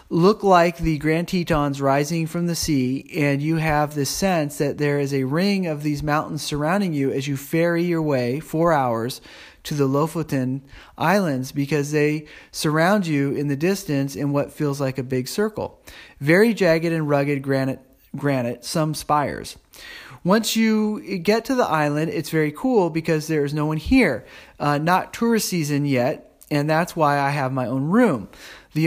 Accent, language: American, English